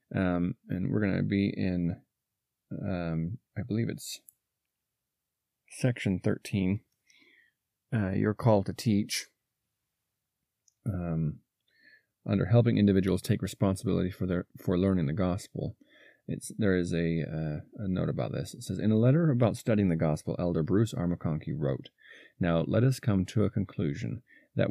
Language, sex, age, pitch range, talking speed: English, male, 30-49, 90-110 Hz, 145 wpm